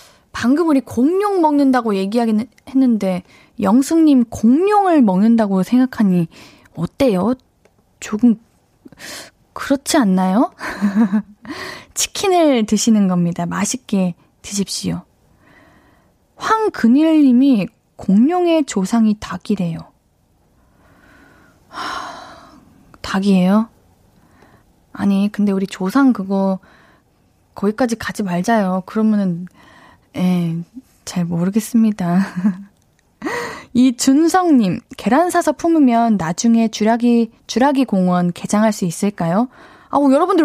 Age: 20-39